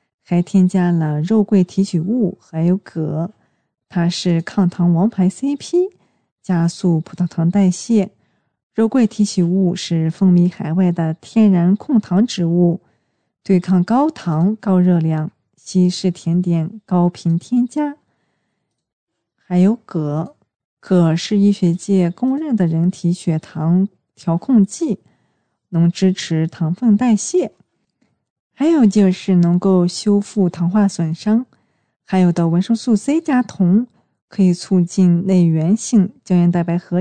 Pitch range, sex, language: 170-205 Hz, female, Chinese